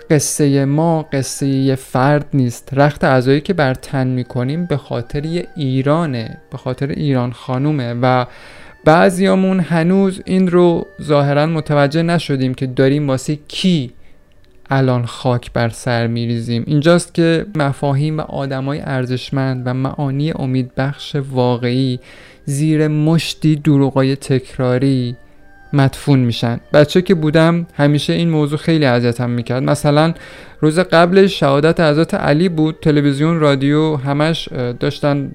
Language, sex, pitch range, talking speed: Persian, male, 130-160 Hz, 125 wpm